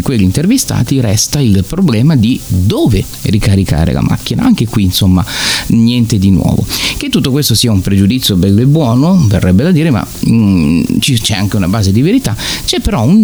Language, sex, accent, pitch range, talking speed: Italian, male, native, 100-155 Hz, 175 wpm